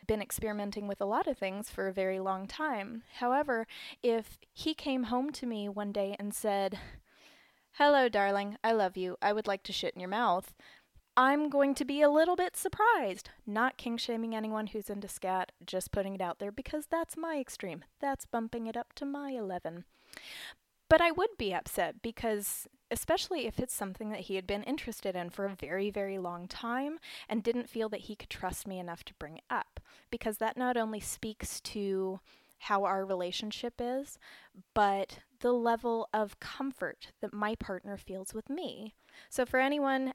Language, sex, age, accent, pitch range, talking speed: English, female, 20-39, American, 200-260 Hz, 190 wpm